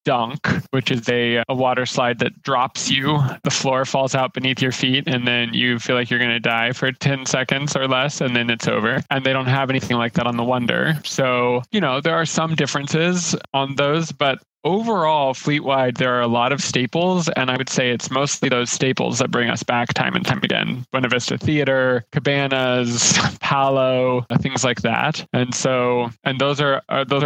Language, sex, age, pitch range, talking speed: English, male, 20-39, 125-145 Hz, 210 wpm